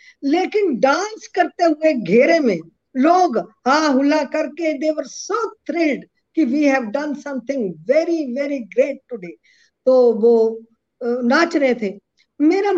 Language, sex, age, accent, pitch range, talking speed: Hindi, female, 50-69, native, 235-325 Hz, 120 wpm